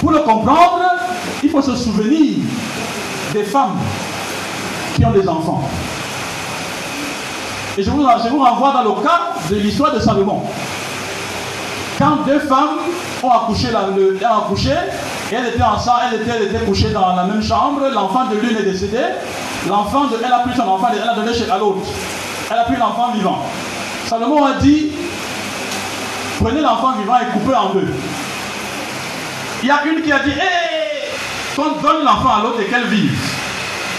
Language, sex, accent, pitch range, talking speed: French, male, French, 210-295 Hz, 160 wpm